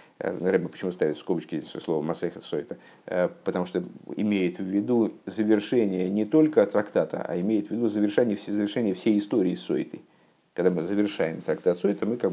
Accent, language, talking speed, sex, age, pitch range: native, Russian, 165 wpm, male, 50-69, 100-135 Hz